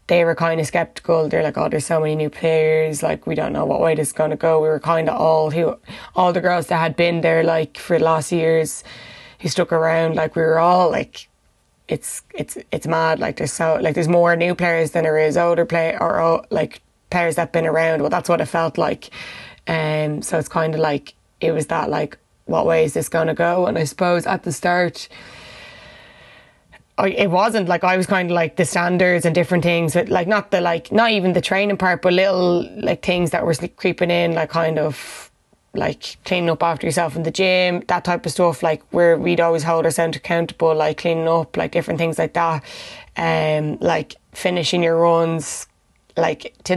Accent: Irish